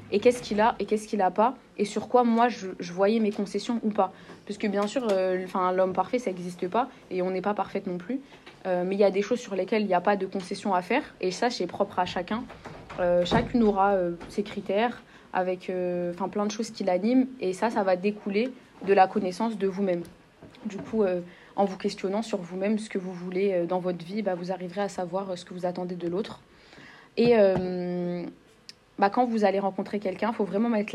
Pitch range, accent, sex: 185-220 Hz, French, female